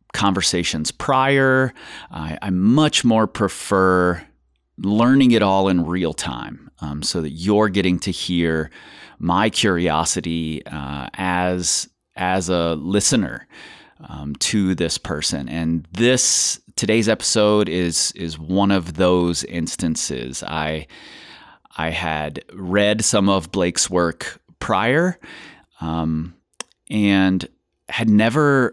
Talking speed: 115 wpm